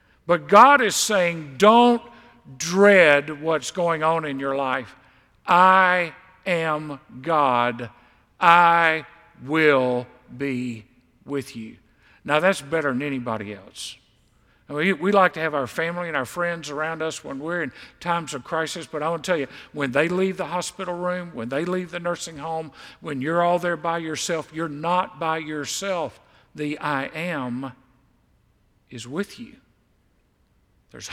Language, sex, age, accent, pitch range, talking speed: English, male, 50-69, American, 140-205 Hz, 150 wpm